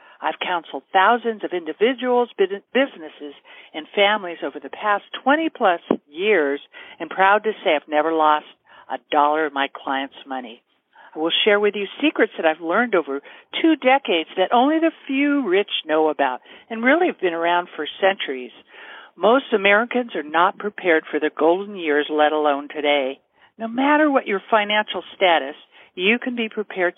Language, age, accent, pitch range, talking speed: English, 60-79, American, 165-245 Hz, 165 wpm